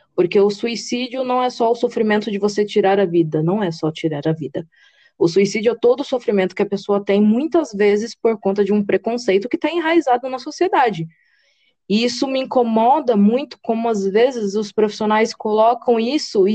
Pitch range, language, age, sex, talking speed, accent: 180-245 Hz, Portuguese, 20-39, female, 195 wpm, Brazilian